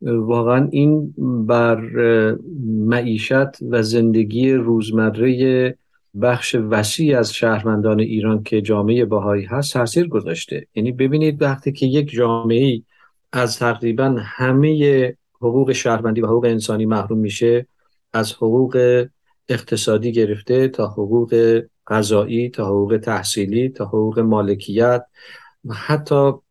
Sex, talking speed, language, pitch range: male, 110 wpm, Persian, 110-135 Hz